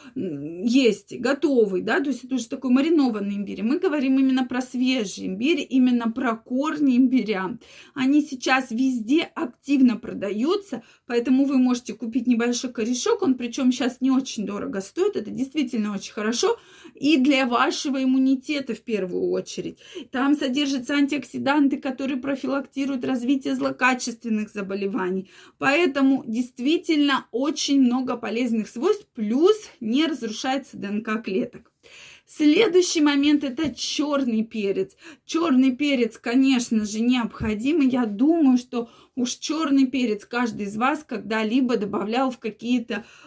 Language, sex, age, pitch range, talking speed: Russian, female, 20-39, 230-280 Hz, 125 wpm